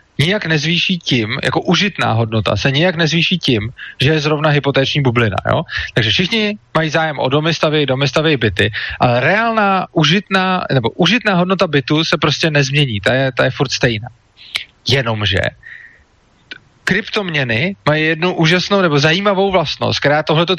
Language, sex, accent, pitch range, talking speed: Czech, male, native, 120-180 Hz, 150 wpm